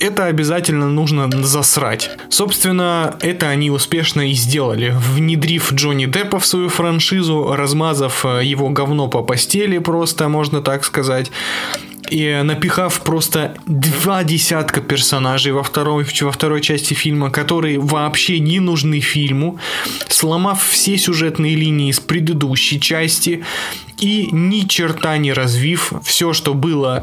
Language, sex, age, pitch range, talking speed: Russian, male, 20-39, 140-170 Hz, 125 wpm